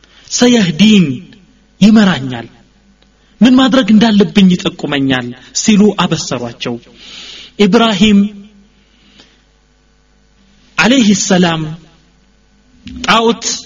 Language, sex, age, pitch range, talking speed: Amharic, male, 30-49, 175-225 Hz, 55 wpm